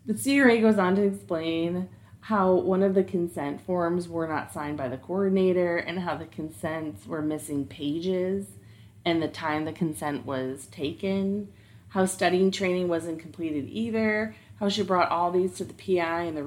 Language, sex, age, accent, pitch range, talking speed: English, female, 30-49, American, 135-175 Hz, 175 wpm